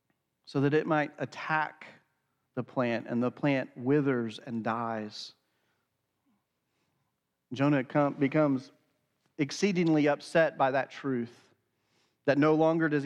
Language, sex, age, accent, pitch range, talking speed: English, male, 40-59, American, 125-165 Hz, 110 wpm